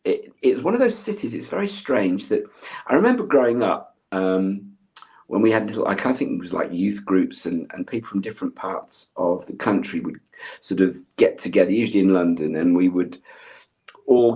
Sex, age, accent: male, 50-69, British